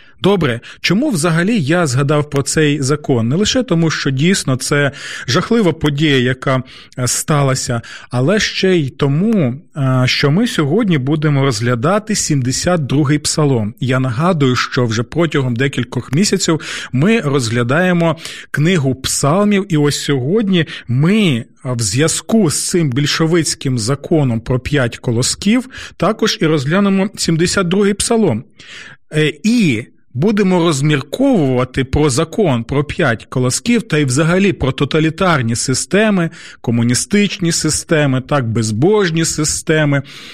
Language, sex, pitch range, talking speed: Ukrainian, male, 130-180 Hz, 115 wpm